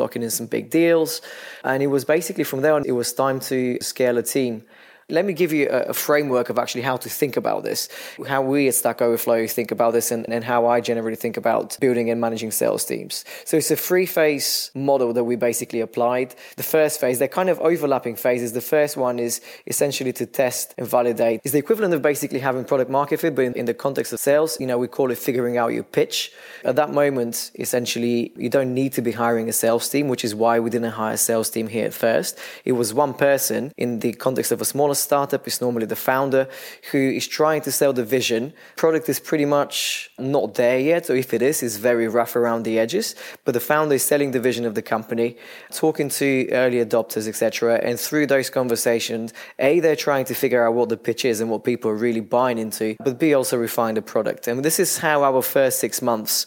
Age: 20-39